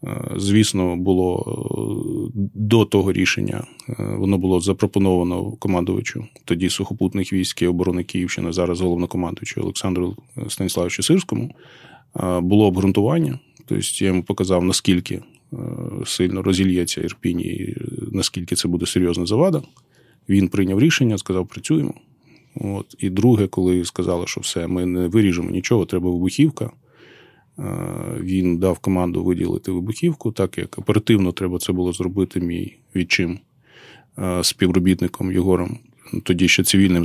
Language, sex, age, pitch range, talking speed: Ukrainian, male, 20-39, 90-110 Hz, 120 wpm